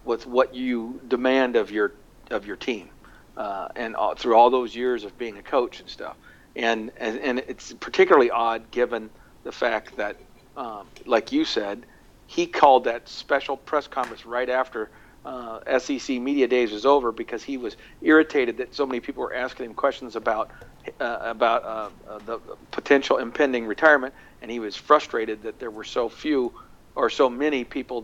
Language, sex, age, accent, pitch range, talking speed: English, male, 50-69, American, 115-140 Hz, 180 wpm